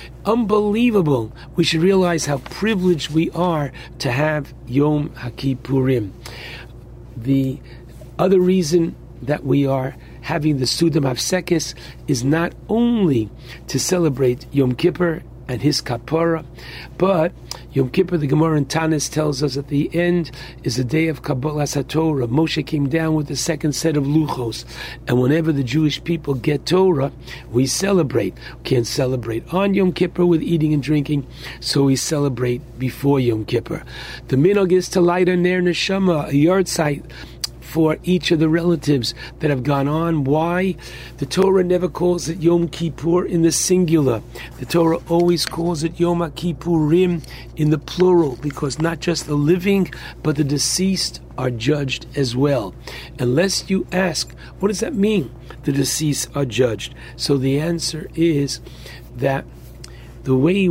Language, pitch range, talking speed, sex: English, 130-170 Hz, 150 wpm, male